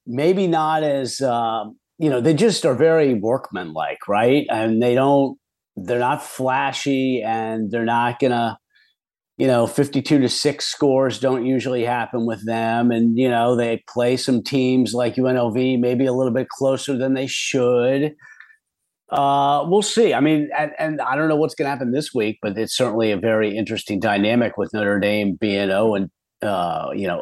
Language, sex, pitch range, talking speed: English, male, 110-145 Hz, 180 wpm